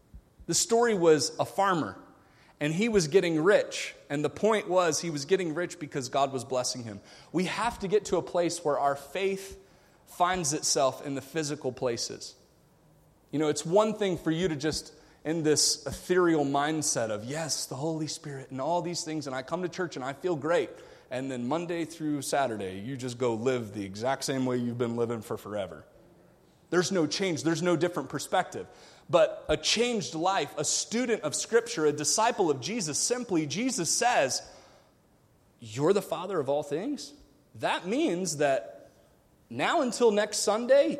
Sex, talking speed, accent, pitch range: male, 180 wpm, American, 140-190 Hz